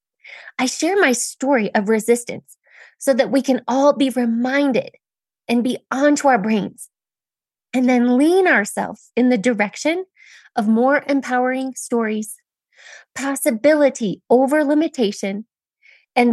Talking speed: 120 wpm